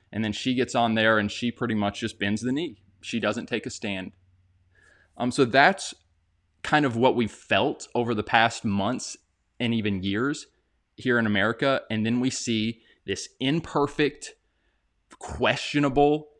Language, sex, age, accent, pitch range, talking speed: English, male, 20-39, American, 100-140 Hz, 160 wpm